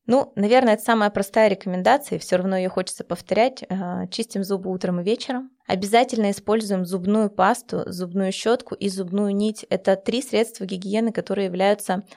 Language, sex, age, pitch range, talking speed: Russian, female, 20-39, 180-210 Hz, 155 wpm